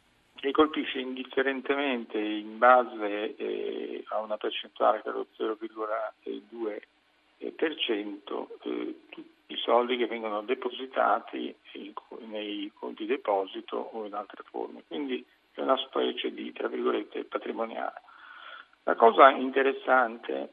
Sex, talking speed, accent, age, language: male, 110 wpm, native, 50-69, Italian